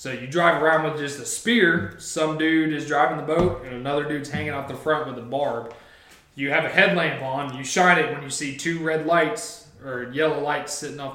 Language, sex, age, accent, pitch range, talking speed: English, male, 20-39, American, 130-170 Hz, 230 wpm